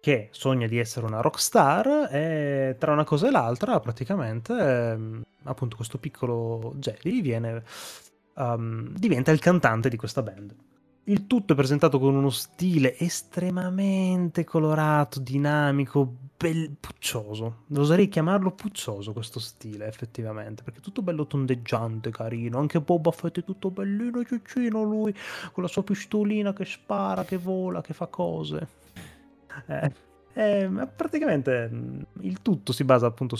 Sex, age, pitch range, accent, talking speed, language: male, 20-39, 115-170 Hz, native, 135 wpm, Italian